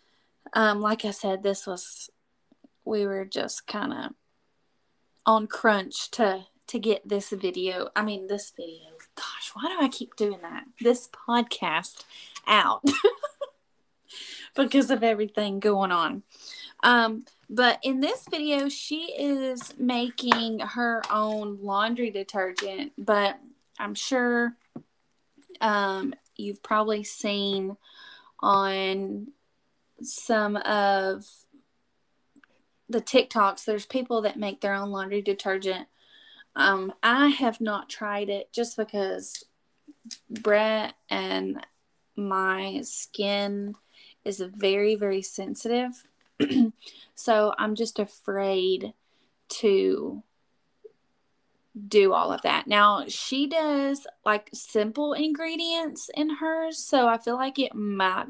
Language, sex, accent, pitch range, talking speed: English, female, American, 200-265 Hz, 110 wpm